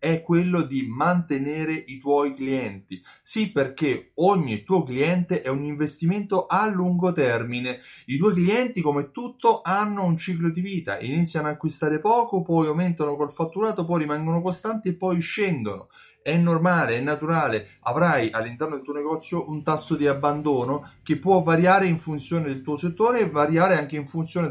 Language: Italian